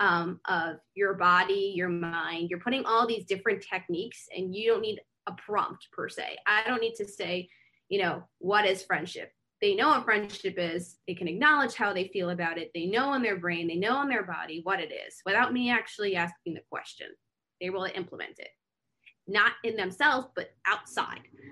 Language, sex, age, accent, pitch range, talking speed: English, female, 20-39, American, 185-240 Hz, 200 wpm